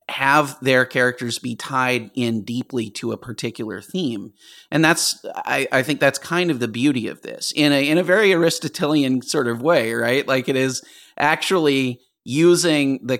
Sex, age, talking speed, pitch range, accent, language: male, 30-49, 175 wpm, 115-145 Hz, American, English